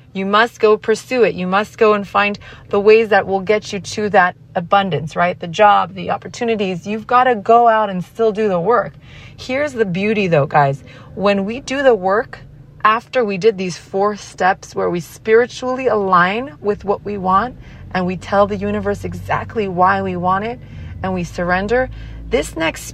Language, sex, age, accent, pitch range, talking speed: English, female, 30-49, American, 175-210 Hz, 190 wpm